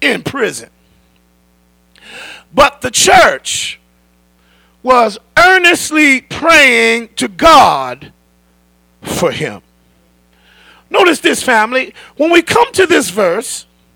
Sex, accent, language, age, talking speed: male, American, English, 40-59, 90 wpm